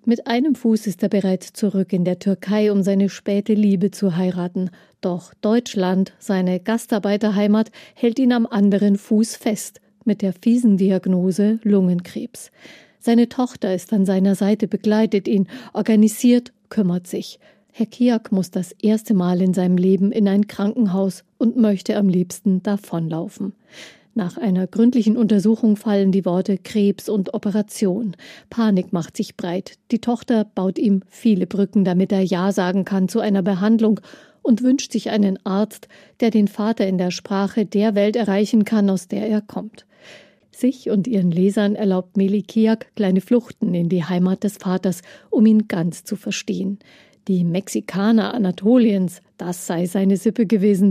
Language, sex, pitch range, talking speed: German, female, 190-220 Hz, 155 wpm